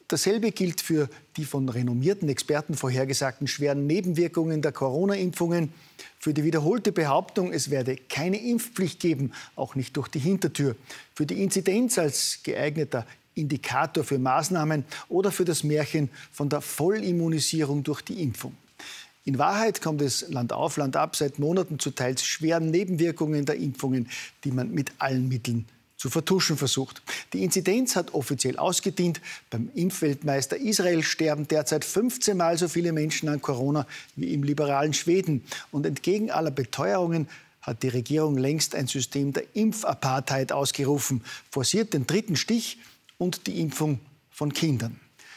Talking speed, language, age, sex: 145 wpm, German, 50-69, male